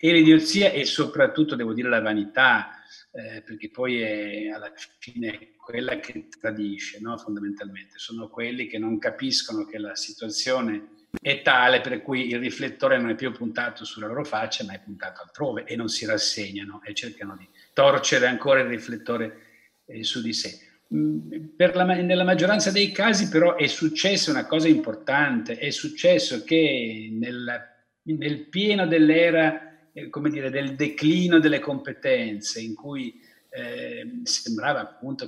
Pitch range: 115-170 Hz